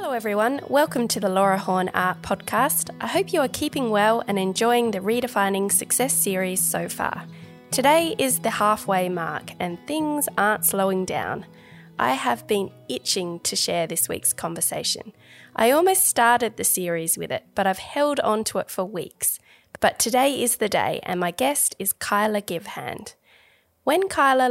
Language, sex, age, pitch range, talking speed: English, female, 20-39, 190-240 Hz, 170 wpm